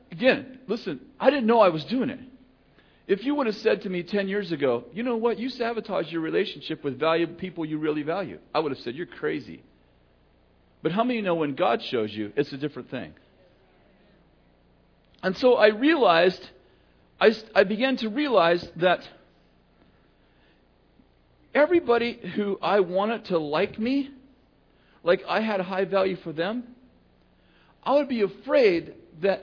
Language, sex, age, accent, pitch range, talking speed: English, male, 50-69, American, 150-240 Hz, 165 wpm